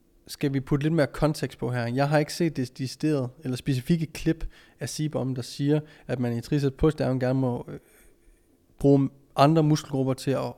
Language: Danish